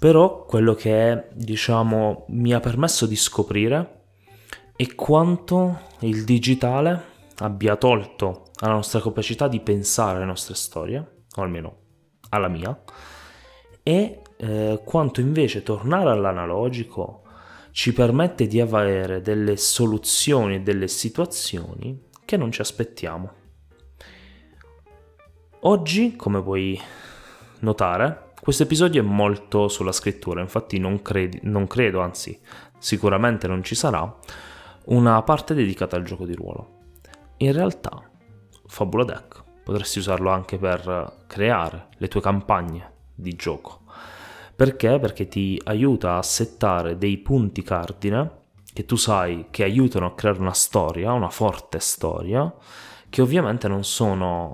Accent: native